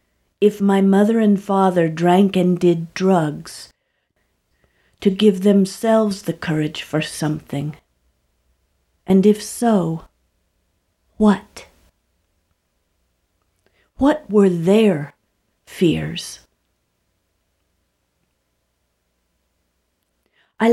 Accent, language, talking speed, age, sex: American, English, 70 wpm, 50-69, female